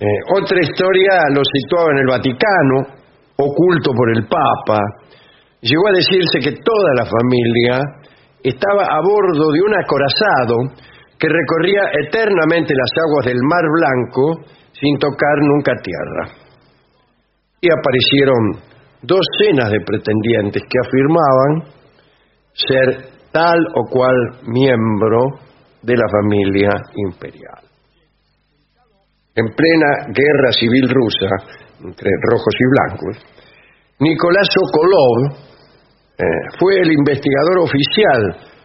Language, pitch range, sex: English, 120-160 Hz, male